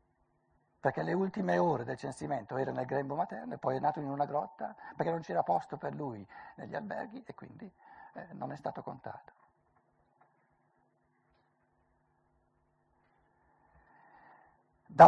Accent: native